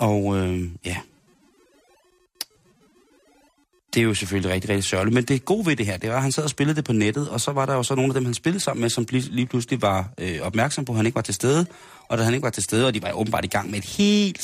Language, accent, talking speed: Danish, native, 285 wpm